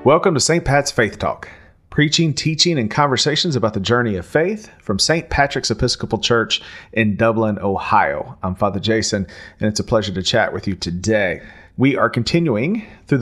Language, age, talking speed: English, 40-59, 175 wpm